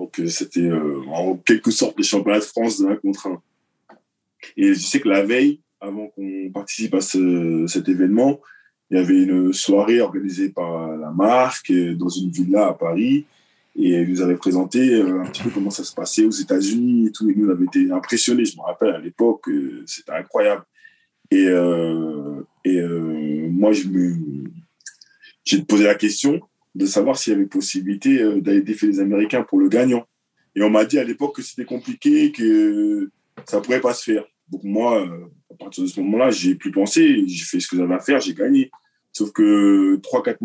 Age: 20-39